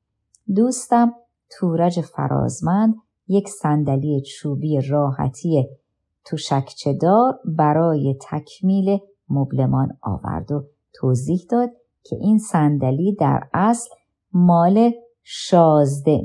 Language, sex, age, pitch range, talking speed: Persian, male, 50-69, 145-215 Hz, 85 wpm